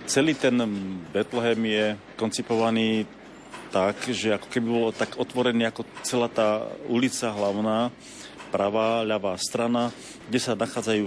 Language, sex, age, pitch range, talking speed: Slovak, male, 40-59, 100-115 Hz, 125 wpm